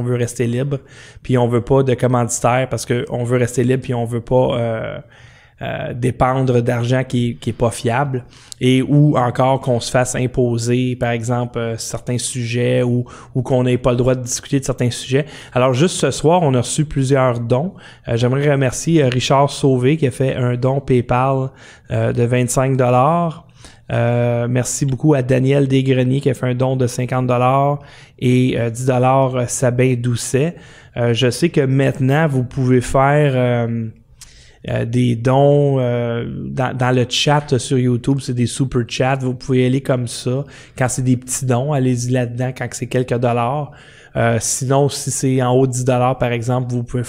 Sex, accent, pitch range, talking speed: male, Canadian, 120-135 Hz, 185 wpm